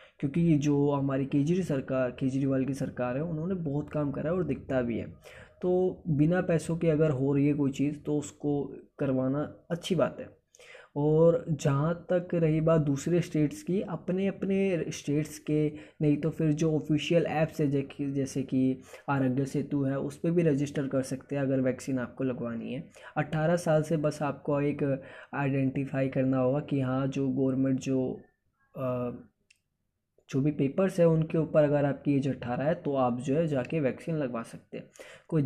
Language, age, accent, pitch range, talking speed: Hindi, 20-39, native, 130-160 Hz, 180 wpm